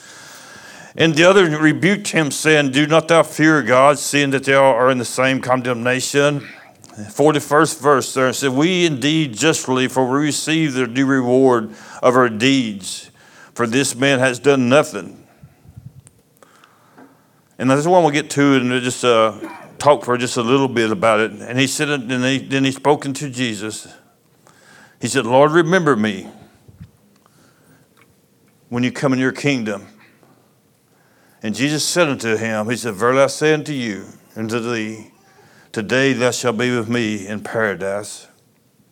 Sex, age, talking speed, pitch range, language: male, 60-79, 165 wpm, 115-145 Hz, English